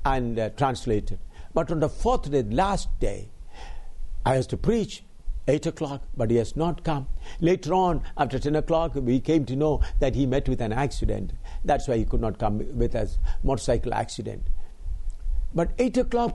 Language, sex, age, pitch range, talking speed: English, male, 60-79, 105-165 Hz, 180 wpm